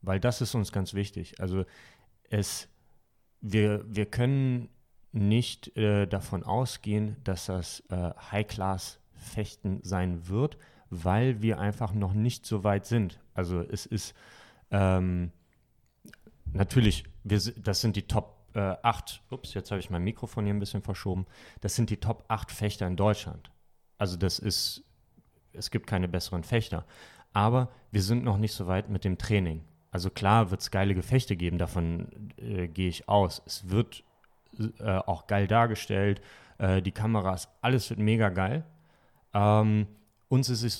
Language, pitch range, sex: German, 95-110 Hz, male